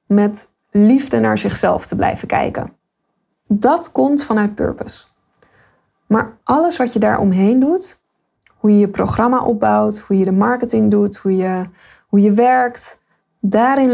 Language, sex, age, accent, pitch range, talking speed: Dutch, female, 20-39, Dutch, 195-250 Hz, 140 wpm